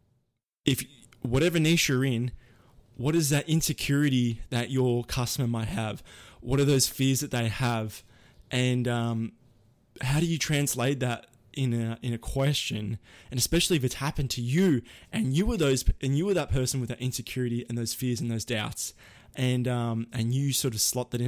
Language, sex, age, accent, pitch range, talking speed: English, male, 20-39, Australian, 115-135 Hz, 190 wpm